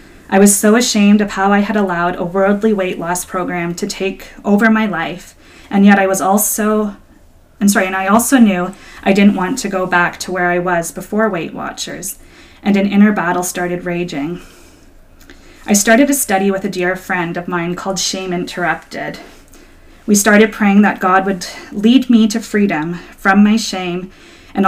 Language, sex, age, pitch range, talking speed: English, female, 20-39, 175-210 Hz, 185 wpm